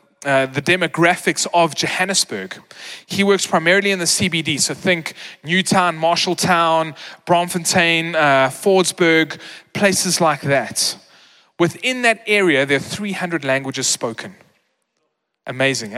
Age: 20-39